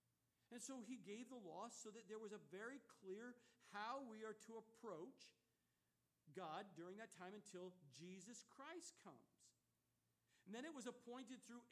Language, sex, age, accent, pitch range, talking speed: English, male, 50-69, American, 180-245 Hz, 165 wpm